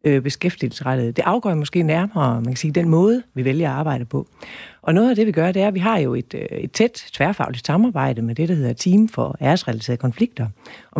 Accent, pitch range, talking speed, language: native, 140-180 Hz, 225 wpm, Danish